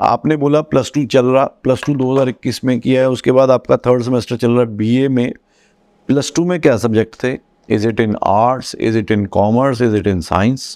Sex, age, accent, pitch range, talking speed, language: male, 50-69, native, 110-130 Hz, 220 wpm, Hindi